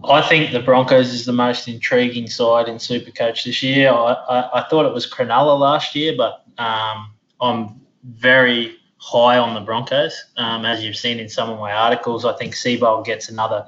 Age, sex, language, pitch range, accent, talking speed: 20-39, male, English, 110-125 Hz, Australian, 195 wpm